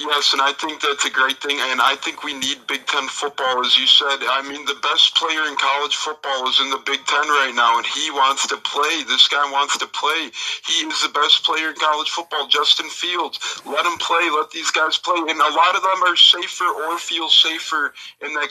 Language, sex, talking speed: English, male, 235 wpm